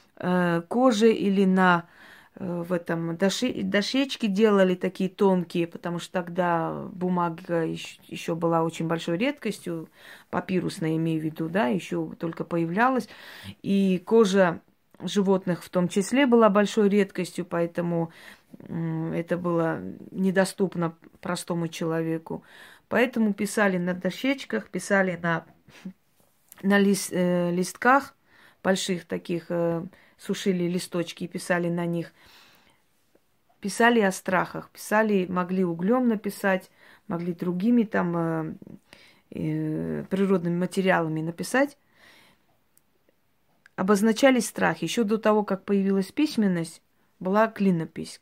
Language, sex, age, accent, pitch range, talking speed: Russian, female, 20-39, native, 170-200 Hz, 105 wpm